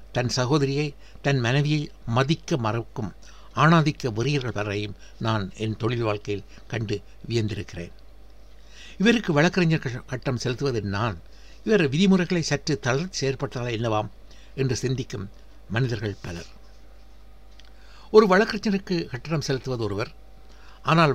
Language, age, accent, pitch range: Tamil, 60-79, native, 105-145 Hz